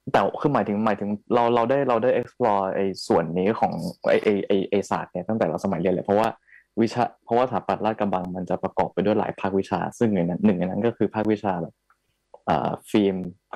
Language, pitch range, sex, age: Thai, 95-115 Hz, male, 20-39